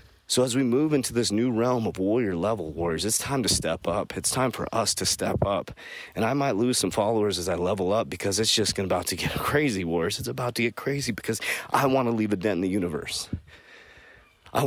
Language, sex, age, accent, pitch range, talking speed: English, male, 30-49, American, 105-130 Hz, 235 wpm